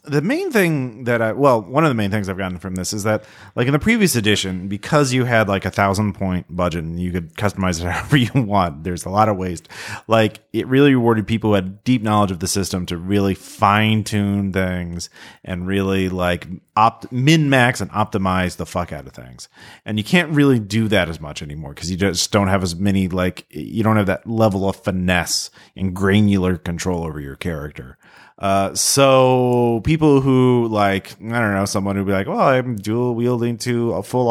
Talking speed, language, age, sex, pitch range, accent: 210 wpm, English, 30-49, male, 95-130 Hz, American